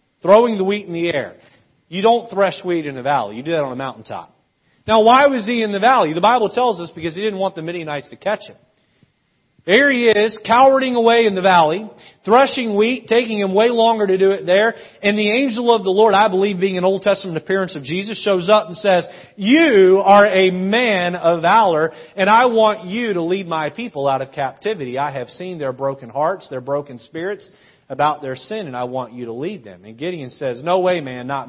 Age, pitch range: 40-59, 155-220 Hz